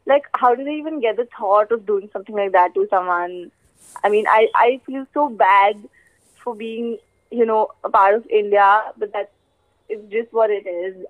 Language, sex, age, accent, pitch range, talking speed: English, female, 20-39, Indian, 205-265 Hz, 195 wpm